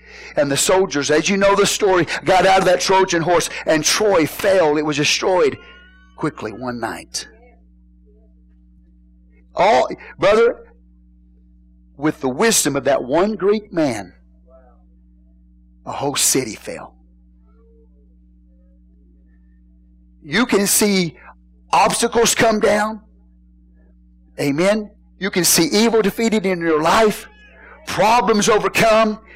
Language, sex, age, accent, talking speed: English, male, 50-69, American, 110 wpm